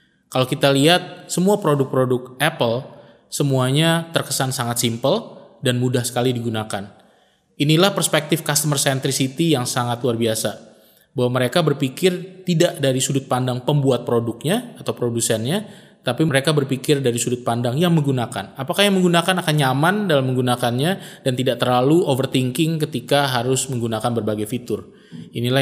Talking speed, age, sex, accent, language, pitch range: 135 wpm, 20-39, male, native, Indonesian, 125-165 Hz